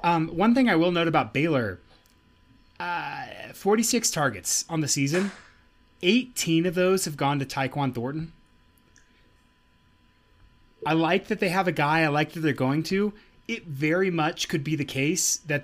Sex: male